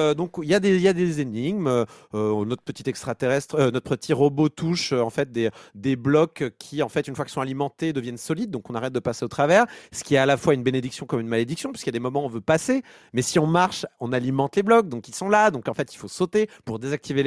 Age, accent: 30-49, French